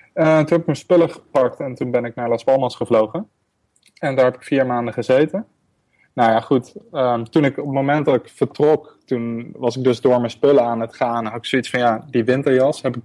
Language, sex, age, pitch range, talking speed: Dutch, male, 20-39, 115-130 Hz, 235 wpm